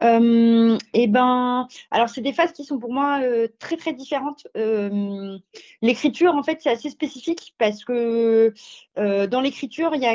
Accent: French